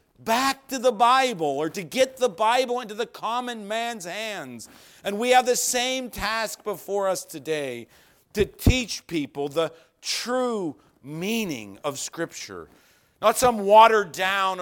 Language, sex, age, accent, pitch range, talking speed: English, male, 50-69, American, 175-255 Hz, 145 wpm